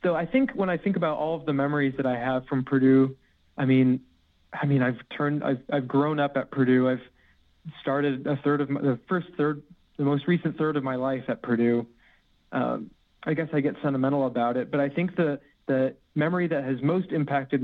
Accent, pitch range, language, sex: American, 125-145 Hz, English, male